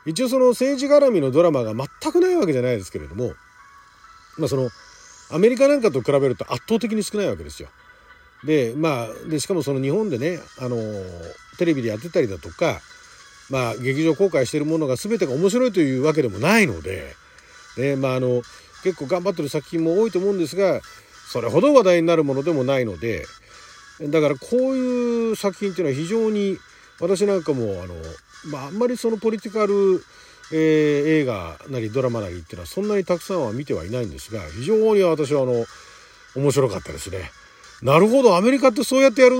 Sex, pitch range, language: male, 135-225 Hz, Japanese